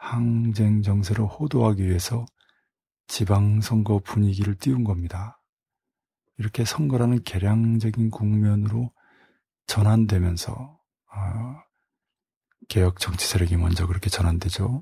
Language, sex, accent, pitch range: Korean, male, native, 100-115 Hz